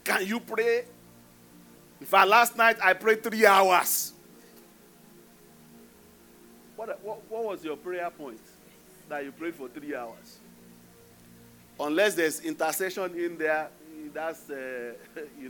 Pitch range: 160-265 Hz